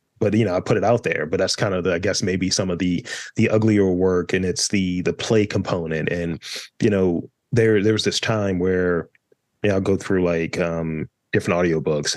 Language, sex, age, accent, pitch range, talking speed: English, male, 30-49, American, 95-125 Hz, 230 wpm